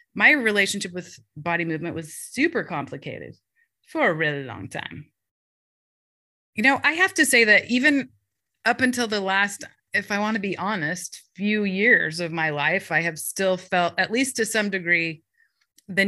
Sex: female